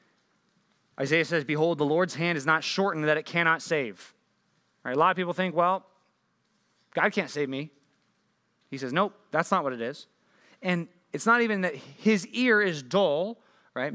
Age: 20-39